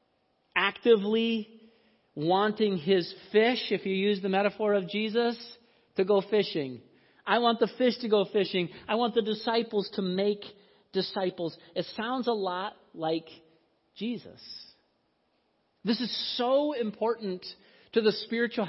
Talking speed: 130 wpm